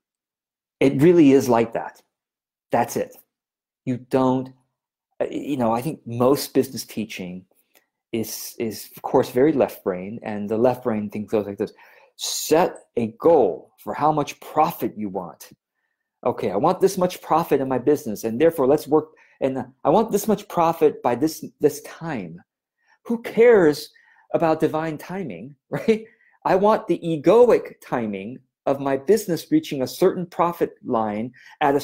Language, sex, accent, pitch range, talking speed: English, male, American, 125-190 Hz, 160 wpm